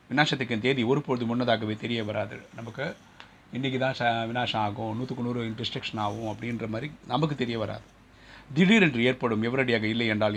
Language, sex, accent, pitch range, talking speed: Tamil, male, native, 110-125 Hz, 145 wpm